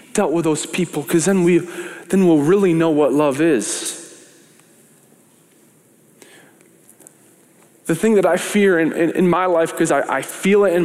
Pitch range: 140-180 Hz